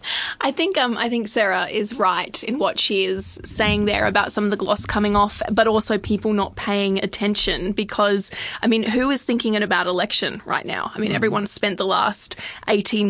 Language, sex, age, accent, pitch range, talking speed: English, female, 20-39, Australian, 200-220 Hz, 200 wpm